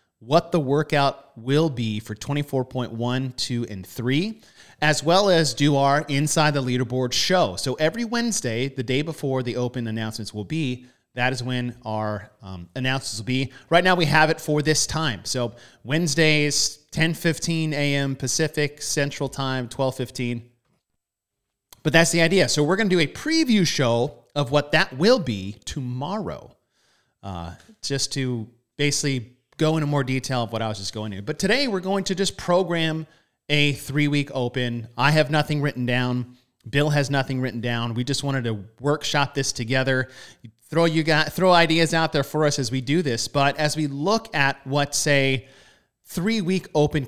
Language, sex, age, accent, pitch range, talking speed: English, male, 30-49, American, 120-155 Hz, 175 wpm